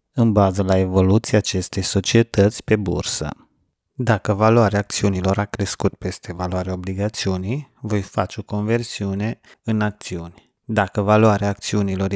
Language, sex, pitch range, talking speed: Romanian, male, 95-110 Hz, 125 wpm